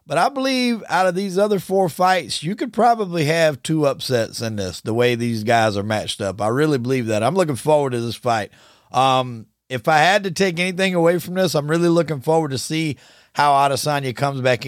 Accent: American